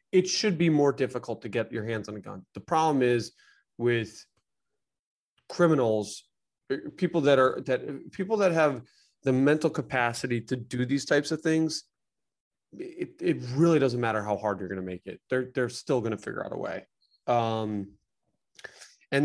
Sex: male